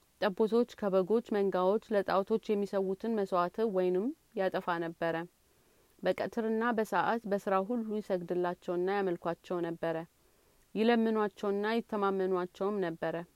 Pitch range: 185-215 Hz